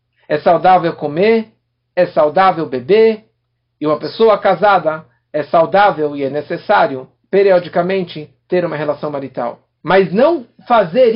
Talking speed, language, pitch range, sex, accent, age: 125 wpm, Portuguese, 145-225 Hz, male, Brazilian, 60-79